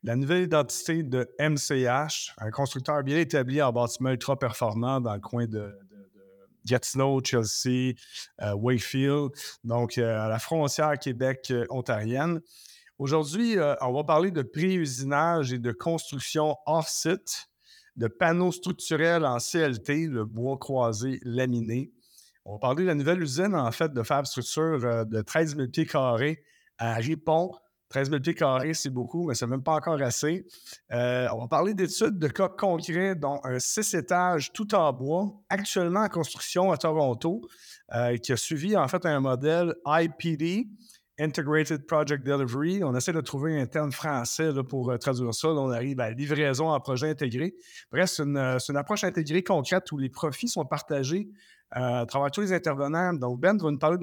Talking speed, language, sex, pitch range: 170 wpm, French, male, 125-170 Hz